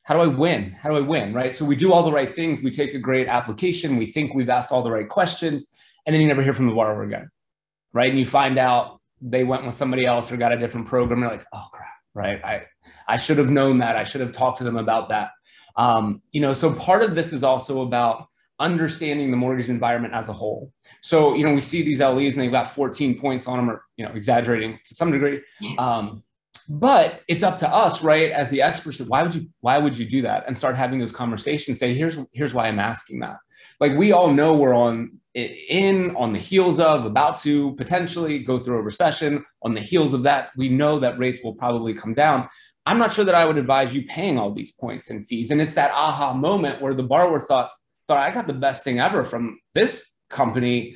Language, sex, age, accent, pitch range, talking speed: English, male, 30-49, American, 120-150 Hz, 240 wpm